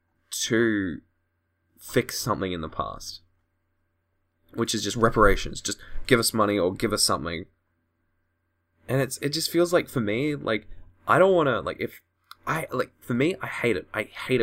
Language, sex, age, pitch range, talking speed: English, male, 10-29, 85-130 Hz, 160 wpm